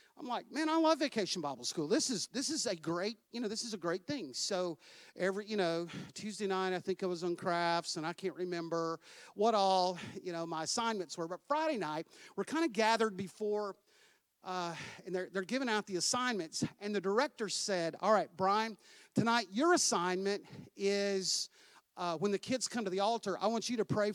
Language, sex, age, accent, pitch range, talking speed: English, male, 50-69, American, 185-235 Hz, 210 wpm